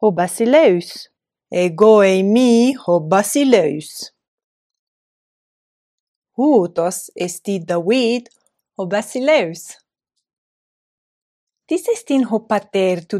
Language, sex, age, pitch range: Greek, female, 30-49, 175-245 Hz